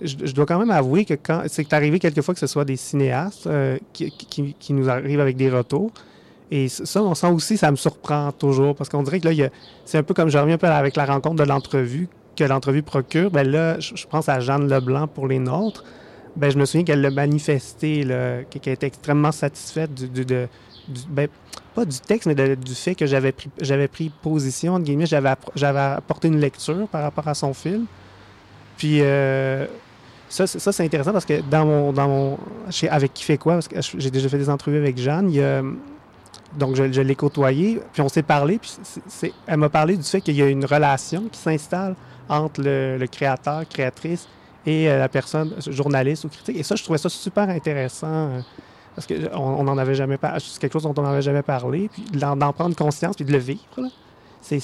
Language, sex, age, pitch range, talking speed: French, male, 30-49, 135-160 Hz, 225 wpm